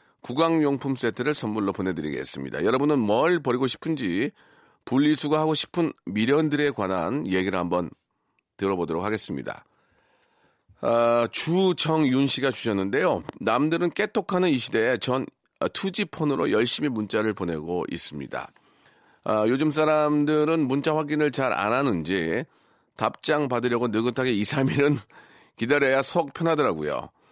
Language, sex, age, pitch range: Korean, male, 40-59, 115-155 Hz